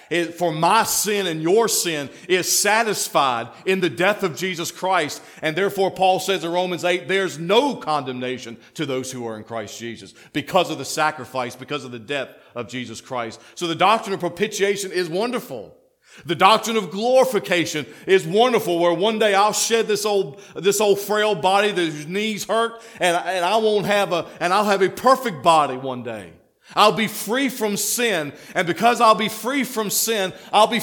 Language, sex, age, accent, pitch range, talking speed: English, male, 40-59, American, 125-200 Hz, 195 wpm